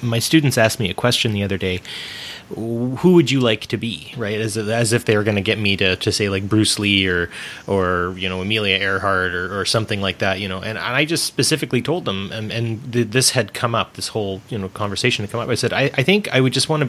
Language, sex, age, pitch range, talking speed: English, male, 30-49, 100-125 Hz, 265 wpm